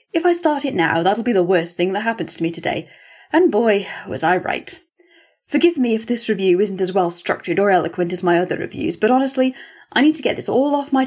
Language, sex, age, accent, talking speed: English, female, 10-29, British, 240 wpm